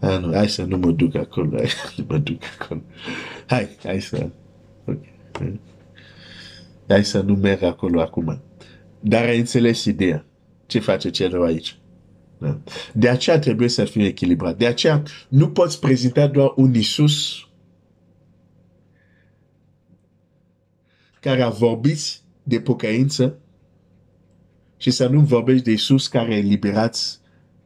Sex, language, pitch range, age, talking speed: male, Romanian, 90-140 Hz, 50-69, 125 wpm